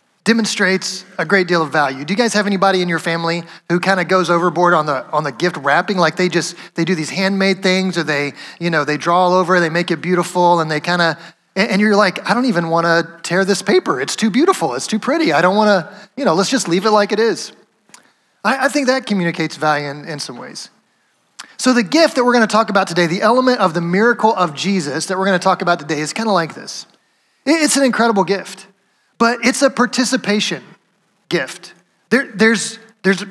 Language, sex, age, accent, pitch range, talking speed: English, male, 30-49, American, 170-210 Hz, 235 wpm